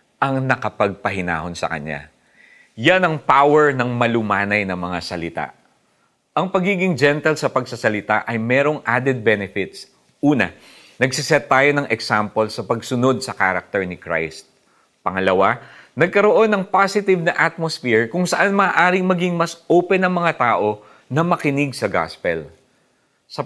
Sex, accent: male, native